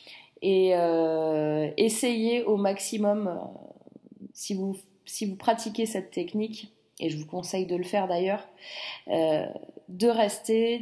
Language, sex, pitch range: French, female, 200-245 Hz